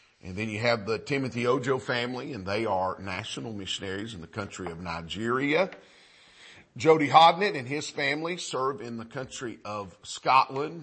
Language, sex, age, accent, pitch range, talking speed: English, male, 40-59, American, 105-135 Hz, 160 wpm